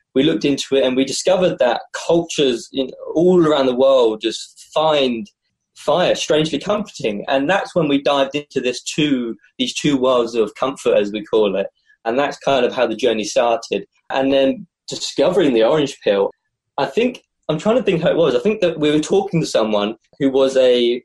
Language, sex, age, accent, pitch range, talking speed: English, male, 20-39, British, 115-155 Hz, 200 wpm